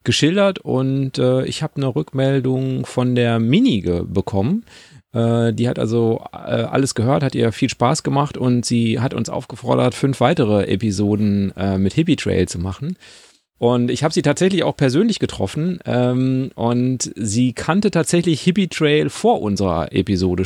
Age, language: 30-49, German